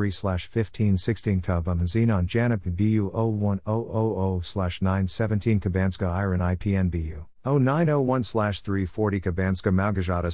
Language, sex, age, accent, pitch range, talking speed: English, male, 50-69, American, 90-110 Hz, 120 wpm